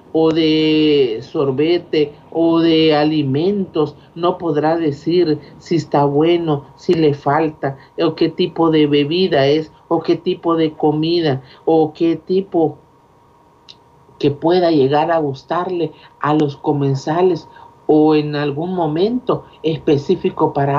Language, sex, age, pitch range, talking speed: Spanish, male, 50-69, 150-185 Hz, 125 wpm